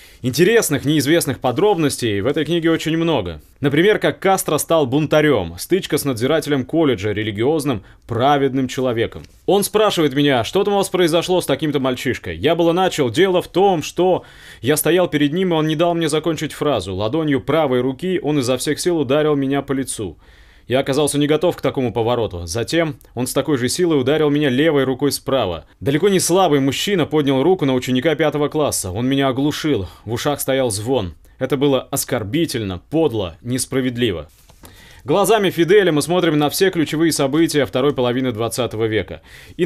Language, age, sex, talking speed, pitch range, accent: Russian, 20-39, male, 170 wpm, 125-160 Hz, native